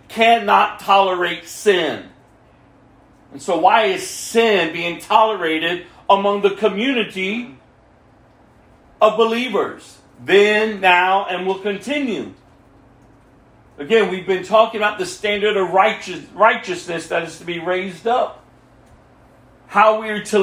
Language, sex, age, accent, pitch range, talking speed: English, male, 50-69, American, 165-225 Hz, 115 wpm